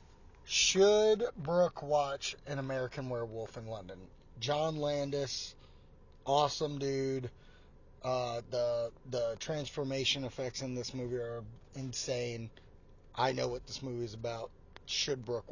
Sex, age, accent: male, 30-49, American